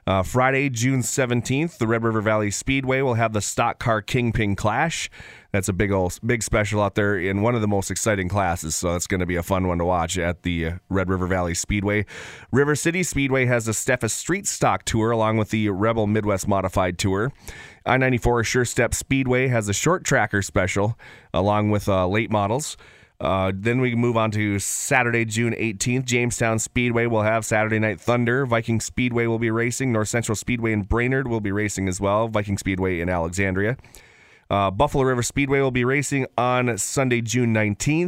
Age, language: 30-49, English